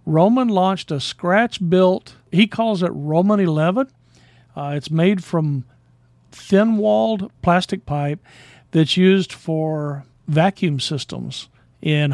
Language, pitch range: English, 150-195 Hz